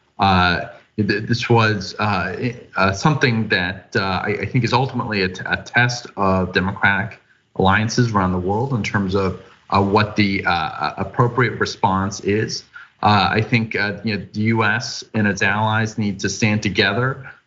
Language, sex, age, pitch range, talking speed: English, male, 30-49, 100-115 Hz, 165 wpm